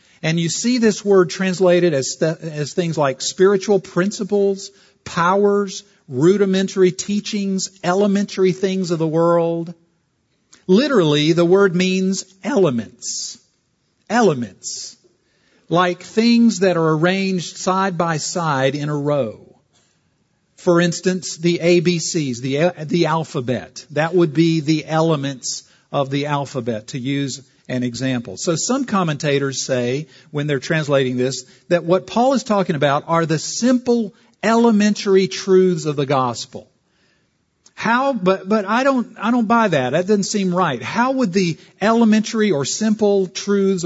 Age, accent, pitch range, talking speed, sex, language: 50-69, American, 150-195 Hz, 135 wpm, male, English